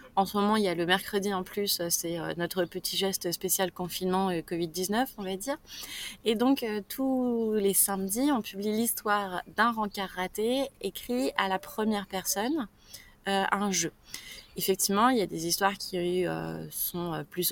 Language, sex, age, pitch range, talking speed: French, female, 20-39, 185-225 Hz, 170 wpm